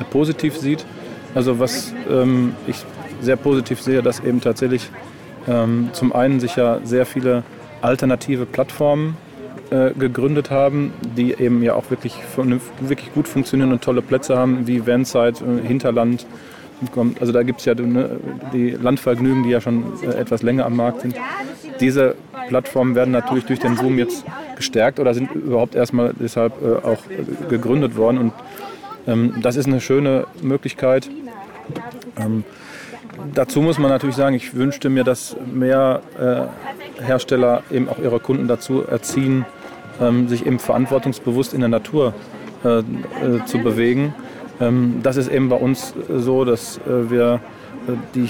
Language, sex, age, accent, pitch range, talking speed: German, male, 30-49, German, 120-135 Hz, 150 wpm